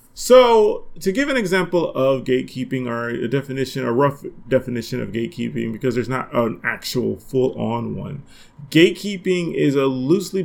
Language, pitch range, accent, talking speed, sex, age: English, 125-165 Hz, American, 150 wpm, male, 30-49